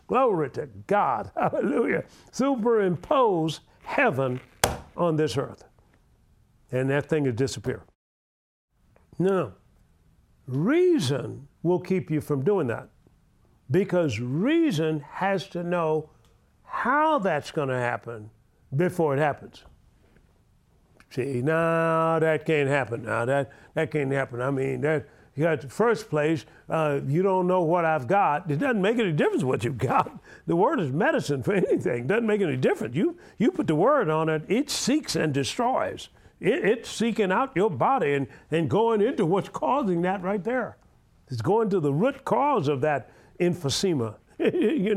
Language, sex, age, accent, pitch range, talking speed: English, male, 50-69, American, 135-195 Hz, 155 wpm